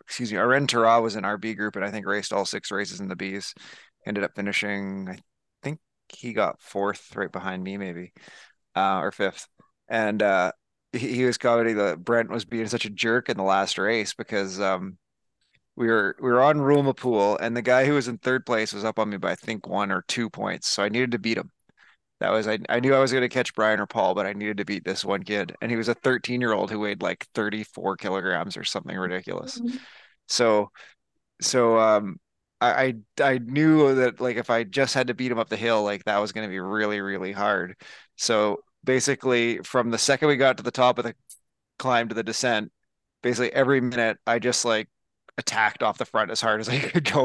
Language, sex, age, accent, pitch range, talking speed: English, male, 20-39, American, 110-130 Hz, 225 wpm